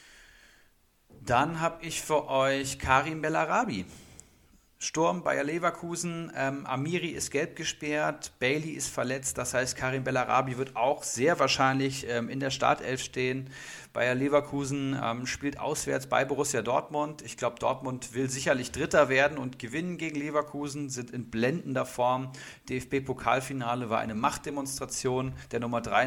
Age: 40-59